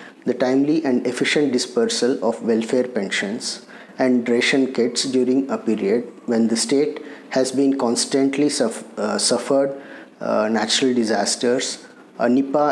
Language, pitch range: English, 115-140 Hz